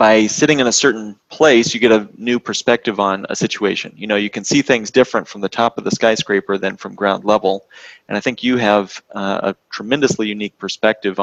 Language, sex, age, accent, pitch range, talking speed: English, male, 30-49, American, 100-120 Hz, 220 wpm